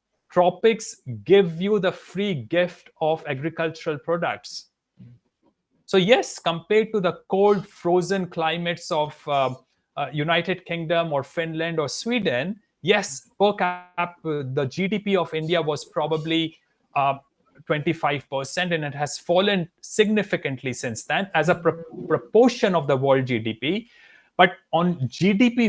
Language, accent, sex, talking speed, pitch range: English, Indian, male, 130 wpm, 155-195 Hz